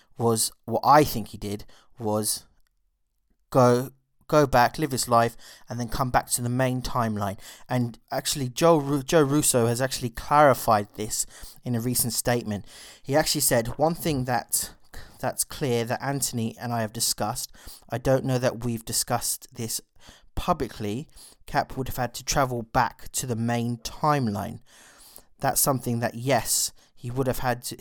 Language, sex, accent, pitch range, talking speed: English, male, British, 115-130 Hz, 165 wpm